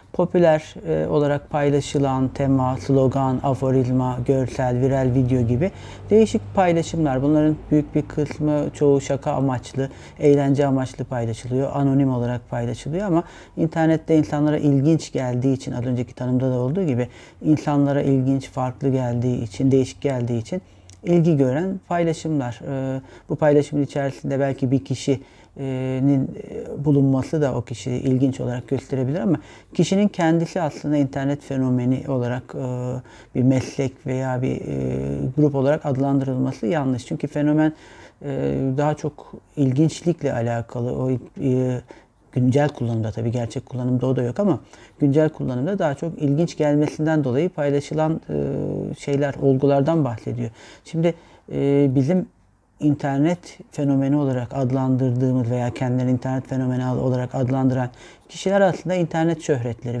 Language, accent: Turkish, native